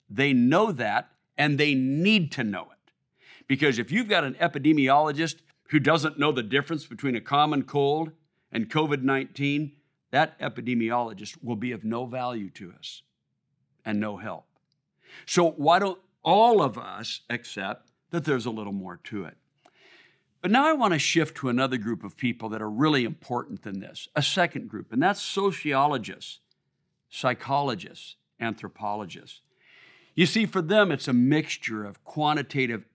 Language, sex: English, male